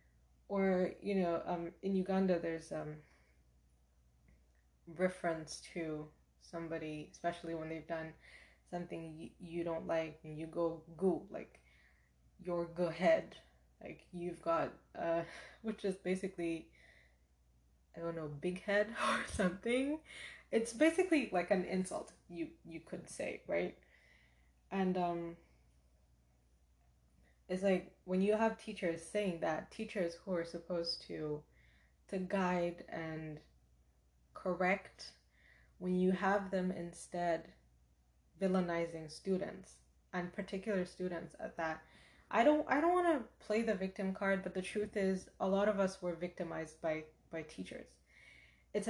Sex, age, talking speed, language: female, 20-39, 130 wpm, English